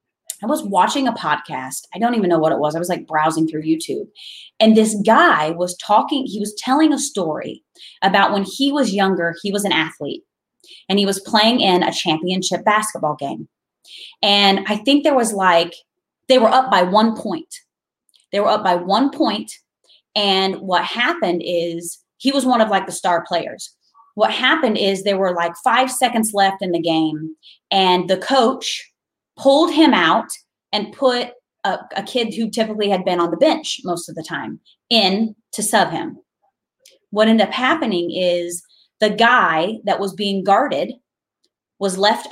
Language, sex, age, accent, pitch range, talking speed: English, female, 20-39, American, 180-250 Hz, 180 wpm